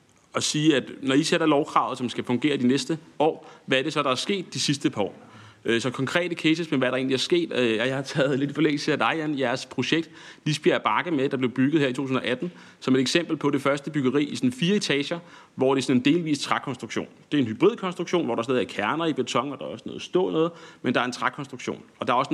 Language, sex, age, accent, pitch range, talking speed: Danish, male, 30-49, native, 125-165 Hz, 265 wpm